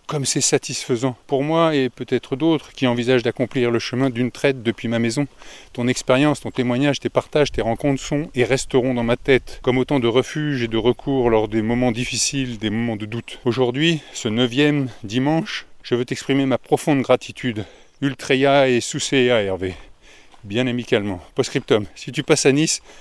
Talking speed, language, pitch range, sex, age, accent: 180 wpm, French, 120-150 Hz, male, 30-49, French